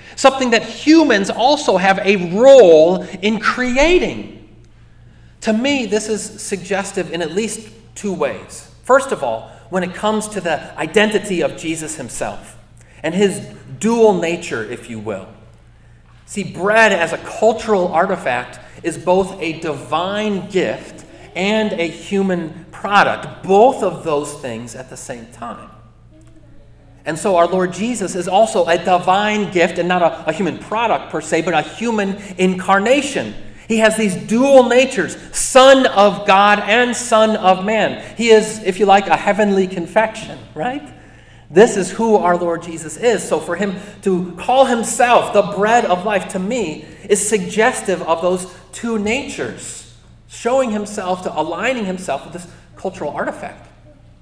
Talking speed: 155 wpm